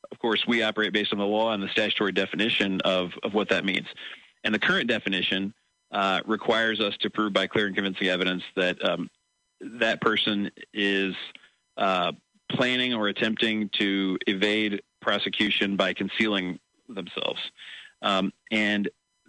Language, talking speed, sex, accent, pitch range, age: English, 150 wpm, male, American, 95-110 Hz, 40-59